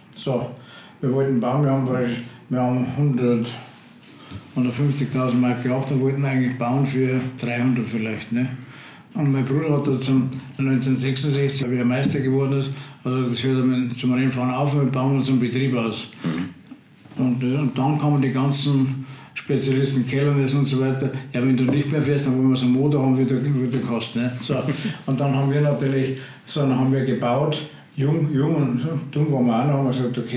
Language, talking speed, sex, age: German, 195 wpm, male, 60-79